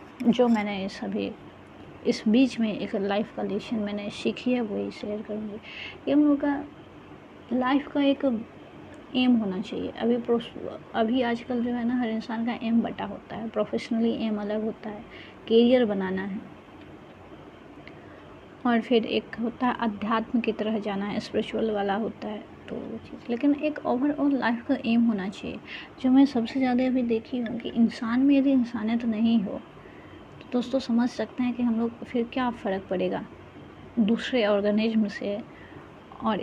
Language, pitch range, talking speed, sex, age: Hindi, 220-255 Hz, 165 wpm, female, 20-39